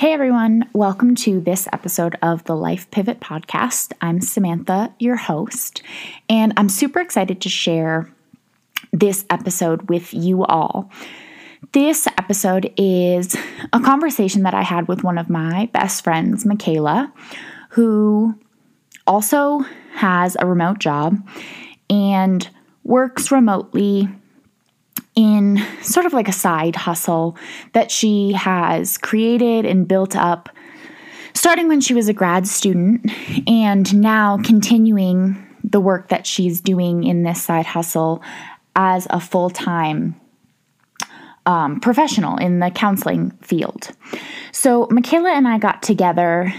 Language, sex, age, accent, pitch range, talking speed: English, female, 20-39, American, 180-235 Hz, 125 wpm